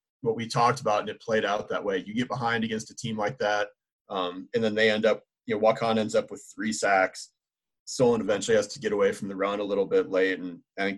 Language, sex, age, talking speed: English, male, 30-49, 260 wpm